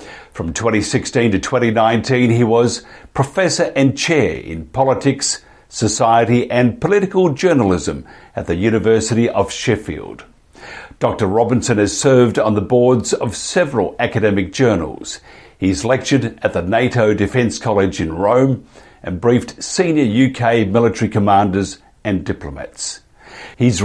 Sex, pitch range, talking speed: male, 100-125 Hz, 125 wpm